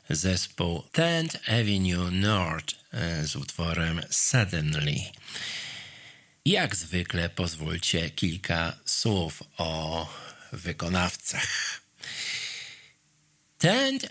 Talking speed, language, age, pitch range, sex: 65 wpm, Polish, 50-69, 85-120 Hz, male